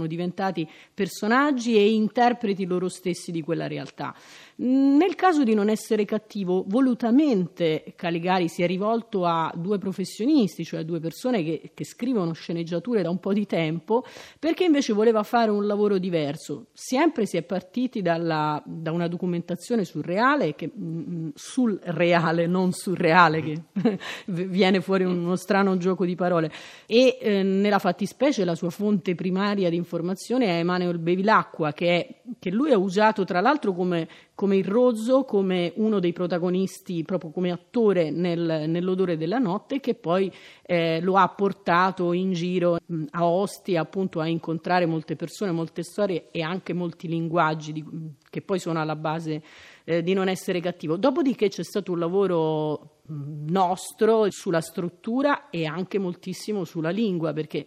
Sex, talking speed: female, 155 wpm